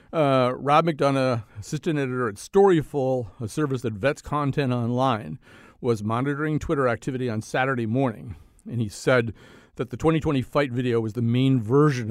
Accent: American